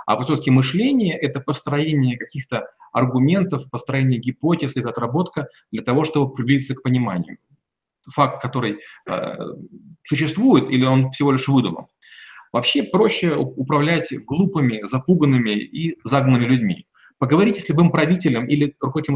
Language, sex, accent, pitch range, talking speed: Russian, male, native, 130-170 Hz, 130 wpm